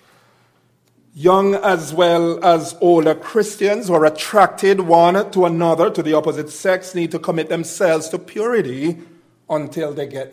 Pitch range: 135-170 Hz